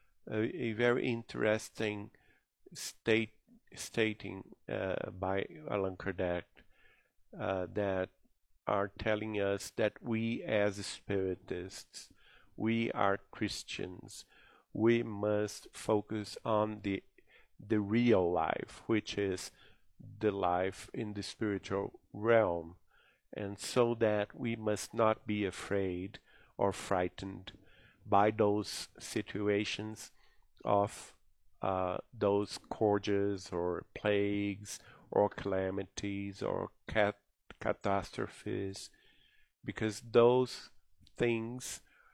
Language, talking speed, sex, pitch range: English, 95 wpm, male, 100-115 Hz